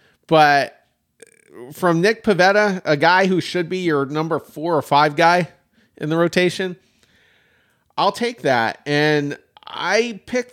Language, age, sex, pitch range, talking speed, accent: English, 40-59, male, 125-170 Hz, 135 wpm, American